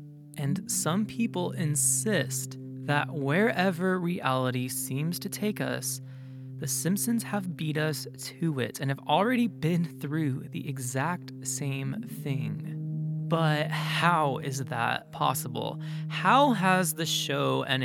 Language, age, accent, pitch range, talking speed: English, 20-39, American, 145-180 Hz, 125 wpm